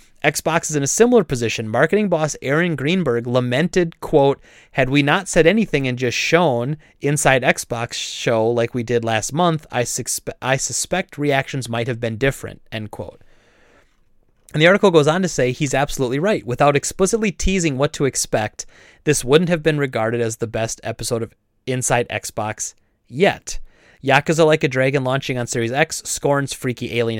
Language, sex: English, male